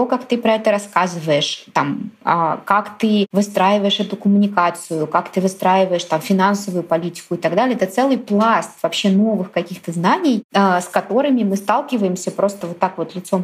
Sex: female